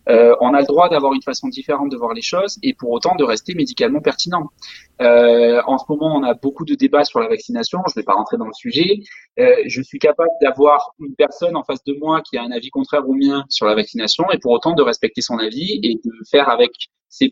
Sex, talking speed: male, 255 wpm